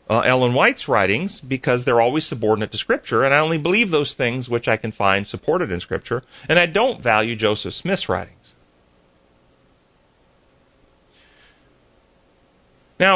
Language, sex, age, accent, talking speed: English, male, 40-59, American, 140 wpm